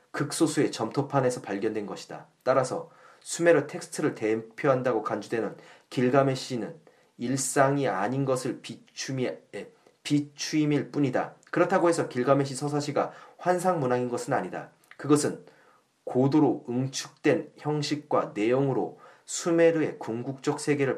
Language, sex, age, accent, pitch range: Korean, male, 30-49, native, 125-150 Hz